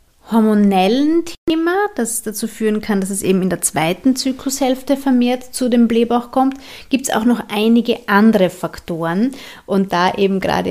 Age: 30-49